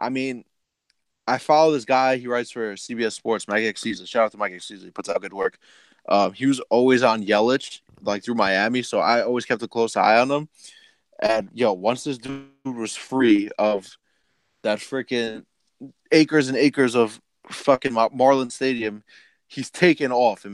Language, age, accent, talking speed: English, 20-39, American, 190 wpm